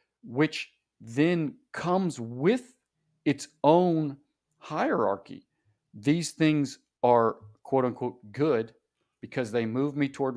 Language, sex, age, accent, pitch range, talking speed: English, male, 40-59, American, 115-150 Hz, 105 wpm